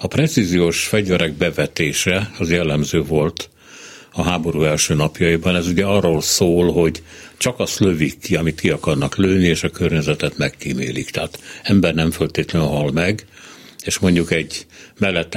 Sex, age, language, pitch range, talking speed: male, 60-79, Hungarian, 80-110 Hz, 150 wpm